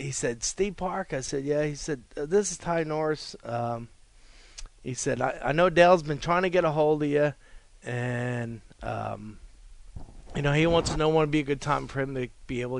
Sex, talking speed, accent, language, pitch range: male, 220 wpm, American, English, 120-155 Hz